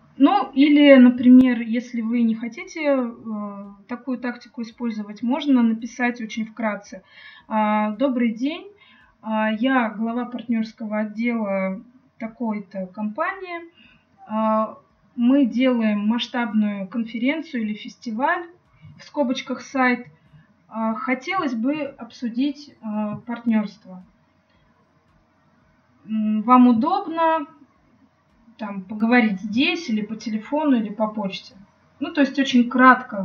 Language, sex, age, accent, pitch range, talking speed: Russian, female, 20-39, native, 215-265 Hz, 90 wpm